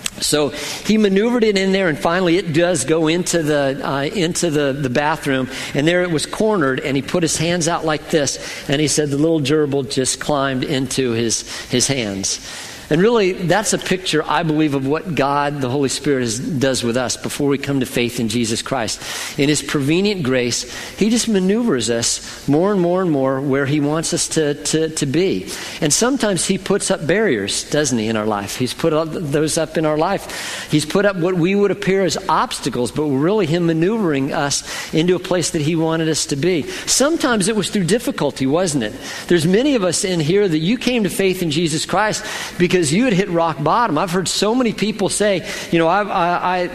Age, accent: 50-69, American